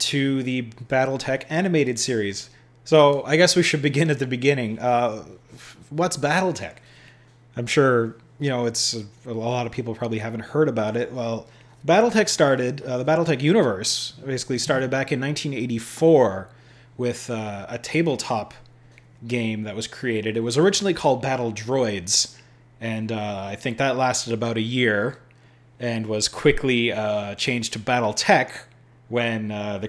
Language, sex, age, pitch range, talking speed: English, male, 30-49, 115-130 Hz, 155 wpm